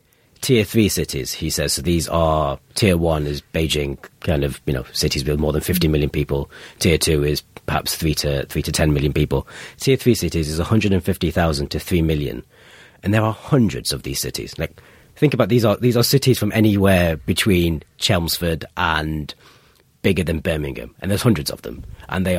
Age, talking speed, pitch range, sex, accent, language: 30-49, 205 wpm, 75-95 Hz, male, British, English